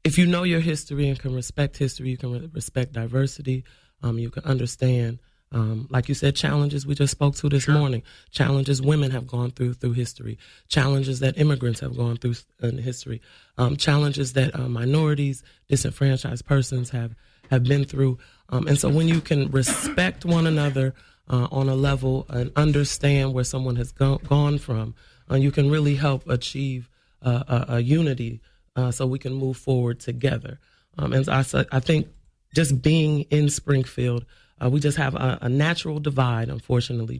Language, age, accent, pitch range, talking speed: English, 30-49, American, 125-140 Hz, 175 wpm